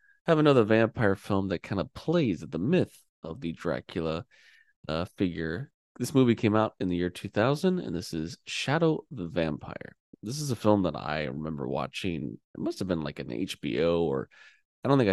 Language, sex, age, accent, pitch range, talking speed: English, male, 20-39, American, 85-110 Hz, 195 wpm